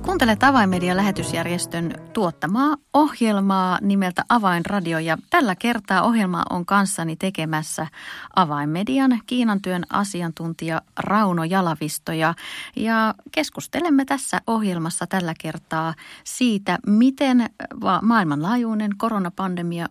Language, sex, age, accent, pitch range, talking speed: Finnish, female, 30-49, native, 160-200 Hz, 85 wpm